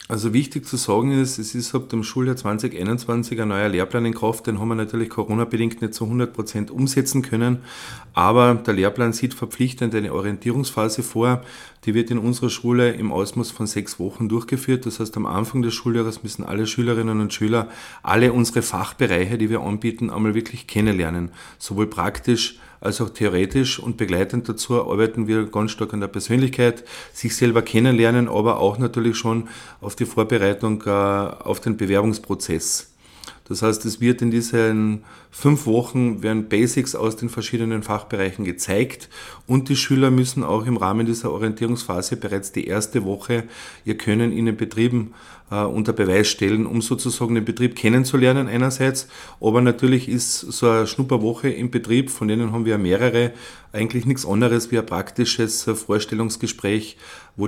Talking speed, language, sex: 165 wpm, German, male